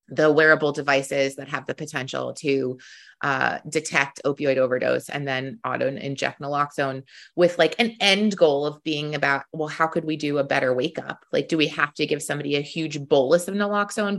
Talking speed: 190 wpm